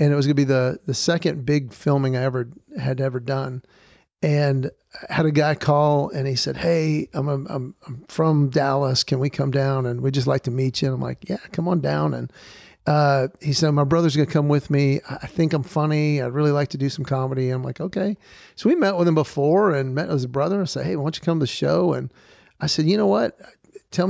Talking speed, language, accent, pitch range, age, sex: 255 wpm, English, American, 135-165 Hz, 50-69, male